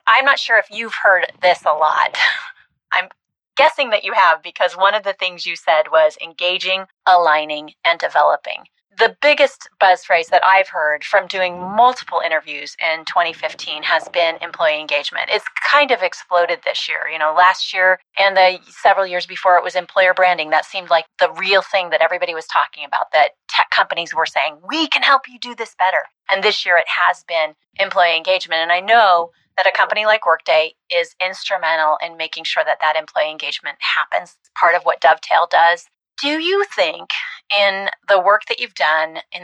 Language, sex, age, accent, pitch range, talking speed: English, female, 30-49, American, 175-220 Hz, 195 wpm